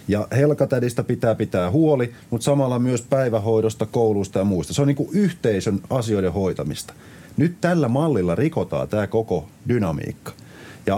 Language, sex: Finnish, male